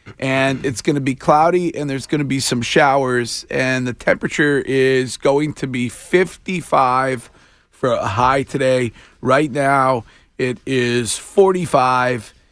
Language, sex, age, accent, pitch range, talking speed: English, male, 40-59, American, 125-150 Hz, 145 wpm